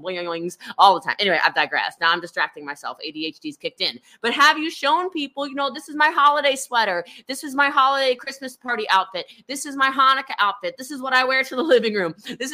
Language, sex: English, female